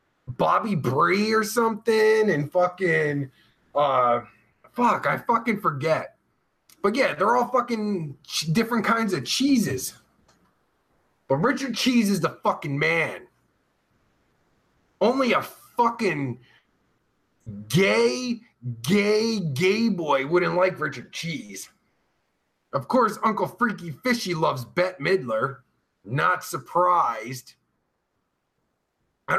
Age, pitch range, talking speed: 30-49, 160-225 Hz, 100 wpm